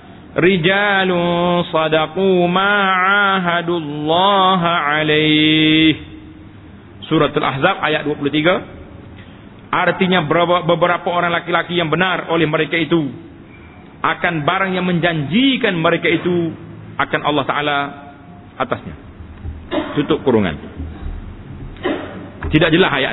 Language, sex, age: Malay, male, 40-59